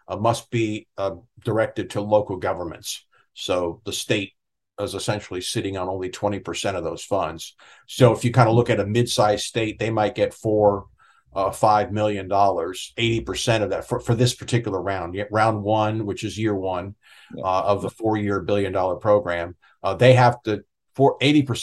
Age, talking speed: 50-69, 175 wpm